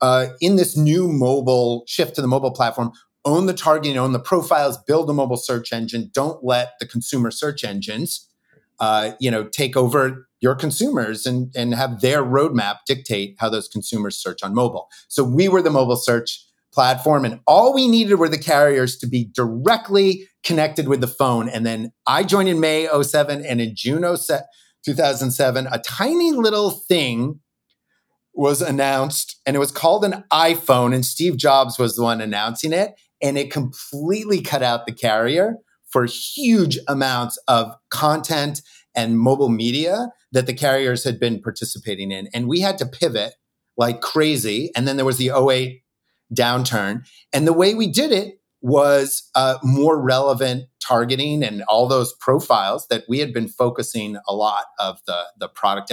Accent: American